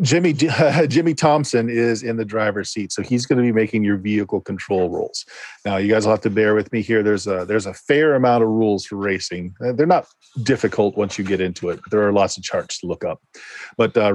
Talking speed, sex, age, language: 245 wpm, male, 40-59, English